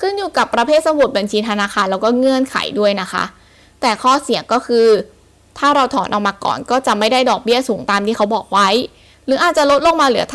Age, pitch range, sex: 10-29, 210-270 Hz, female